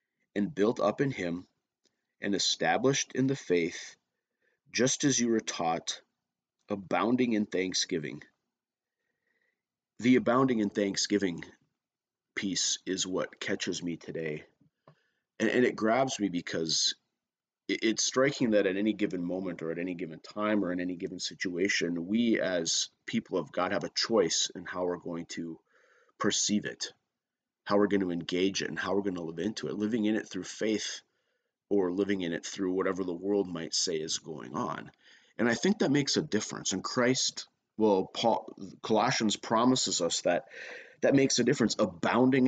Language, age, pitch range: English, 30-49, 90-115 Hz